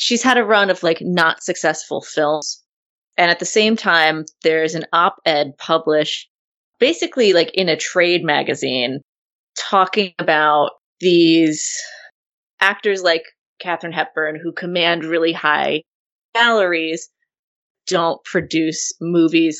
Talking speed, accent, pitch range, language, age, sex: 120 wpm, American, 160-200 Hz, English, 20-39, female